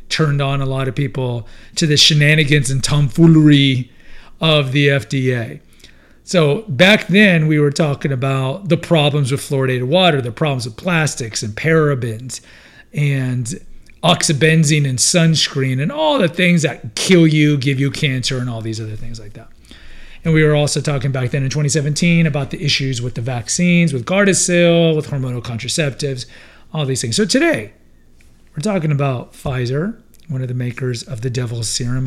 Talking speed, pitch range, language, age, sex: 170 wpm, 120-155 Hz, English, 40-59, male